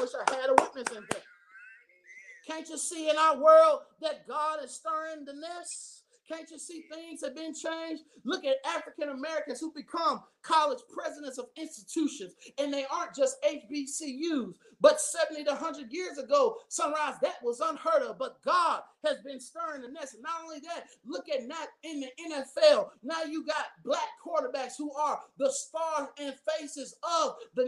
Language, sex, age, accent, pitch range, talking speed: English, male, 30-49, American, 280-345 Hz, 180 wpm